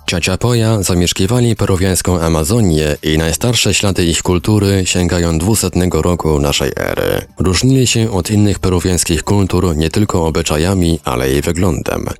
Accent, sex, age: native, male, 30-49